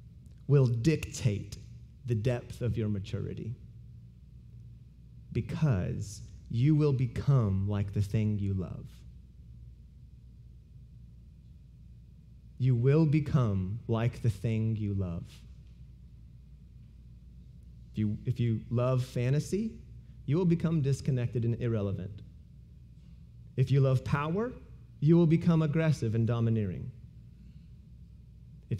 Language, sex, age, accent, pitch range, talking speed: English, male, 30-49, American, 105-140 Hz, 95 wpm